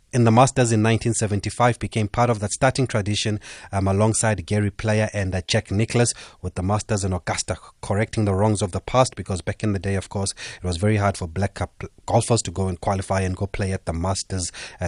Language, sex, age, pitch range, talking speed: English, male, 30-49, 100-120 Hz, 225 wpm